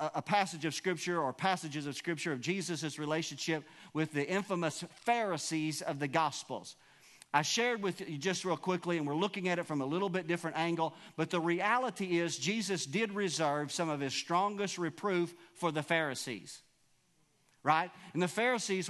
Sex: male